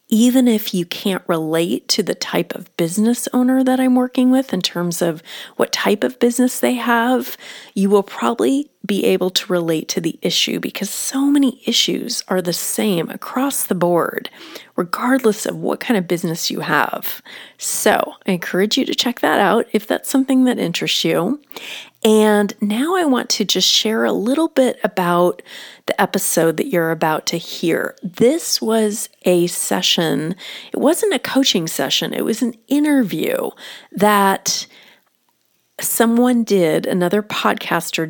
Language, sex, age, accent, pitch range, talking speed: English, female, 30-49, American, 180-240 Hz, 160 wpm